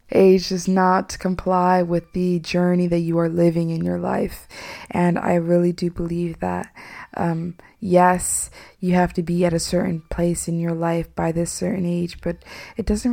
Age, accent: 20-39, American